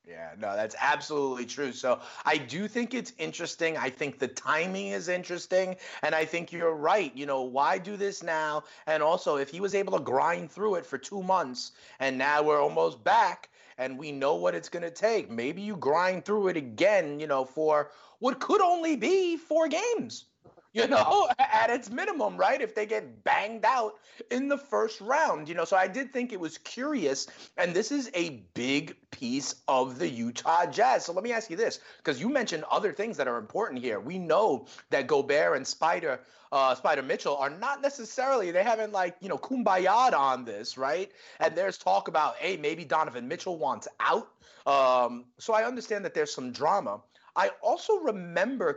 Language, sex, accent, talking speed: English, male, American, 195 wpm